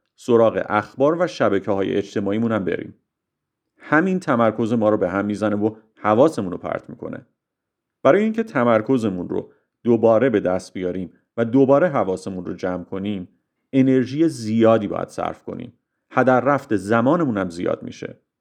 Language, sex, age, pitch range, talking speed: Persian, male, 40-59, 100-135 Hz, 145 wpm